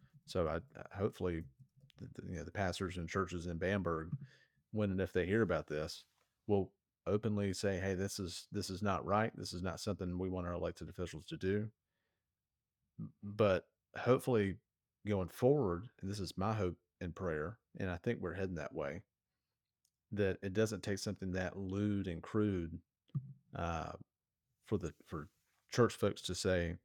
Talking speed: 165 wpm